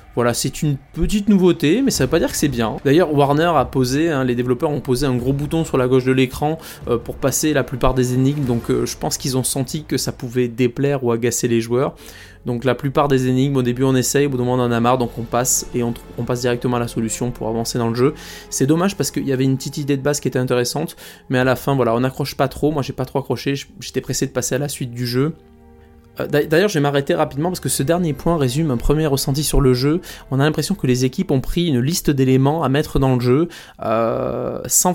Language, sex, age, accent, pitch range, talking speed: French, male, 20-39, French, 130-155 Hz, 275 wpm